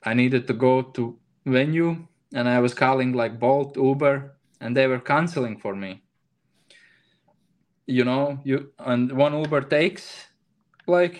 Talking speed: 145 wpm